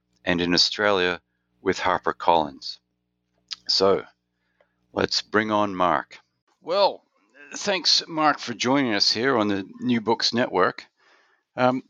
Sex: male